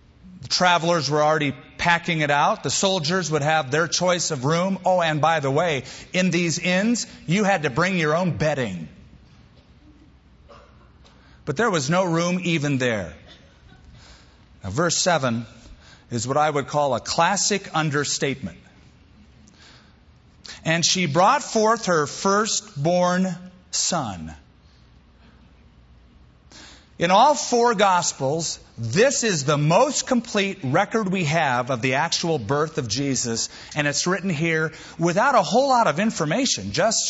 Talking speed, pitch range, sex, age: 135 wpm, 130-185 Hz, male, 40-59